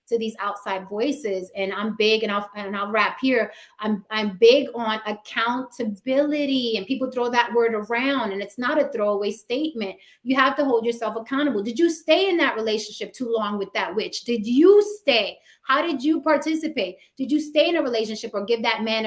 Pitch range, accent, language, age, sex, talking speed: 220-310 Hz, American, English, 30-49, female, 200 wpm